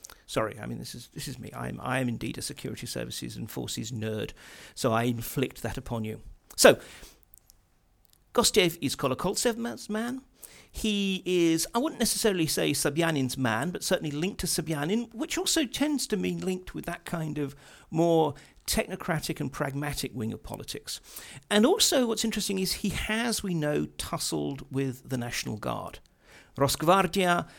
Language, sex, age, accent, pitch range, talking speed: English, male, 50-69, British, 130-180 Hz, 160 wpm